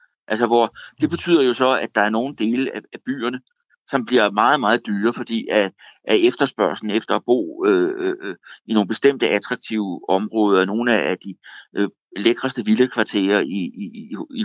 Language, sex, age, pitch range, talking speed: Danish, male, 60-79, 115-155 Hz, 175 wpm